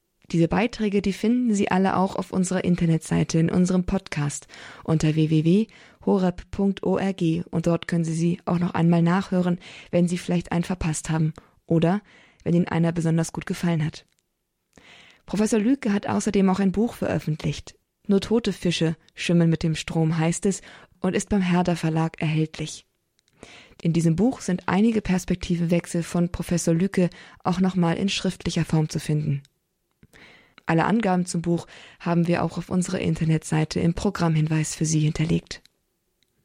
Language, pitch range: German, 165-190 Hz